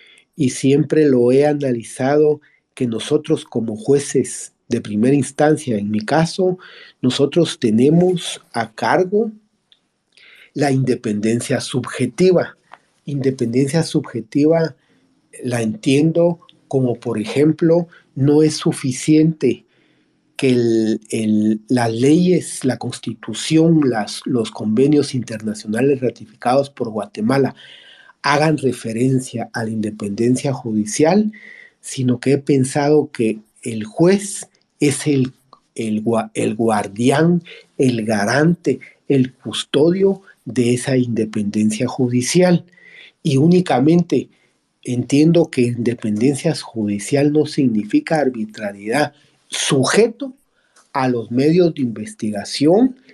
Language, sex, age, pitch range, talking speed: Spanish, male, 50-69, 120-155 Hz, 95 wpm